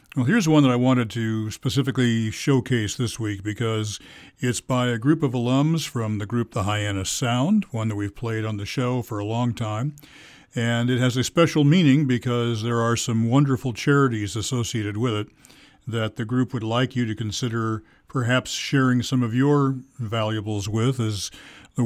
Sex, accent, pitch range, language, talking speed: male, American, 110-135 Hz, English, 185 wpm